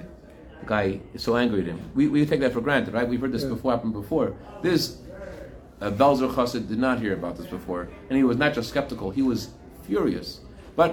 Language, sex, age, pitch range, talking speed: English, male, 30-49, 100-130 Hz, 215 wpm